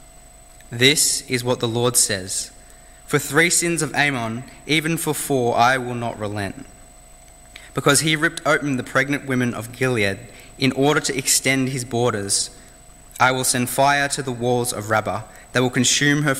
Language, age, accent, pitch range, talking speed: English, 20-39, Australian, 95-130 Hz, 170 wpm